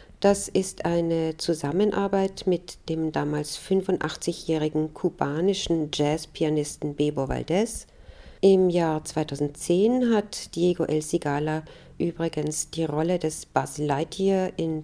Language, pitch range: German, 155-205 Hz